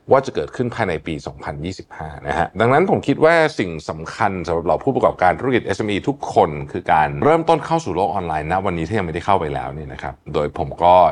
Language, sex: Thai, male